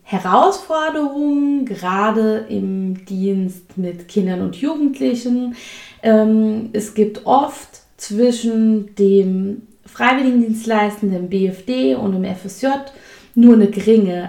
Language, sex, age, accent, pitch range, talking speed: German, female, 20-39, German, 200-250 Hz, 90 wpm